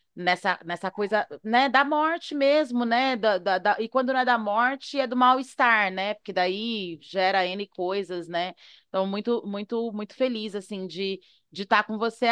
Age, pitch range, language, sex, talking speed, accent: 30-49, 205-260 Hz, Portuguese, female, 195 wpm, Brazilian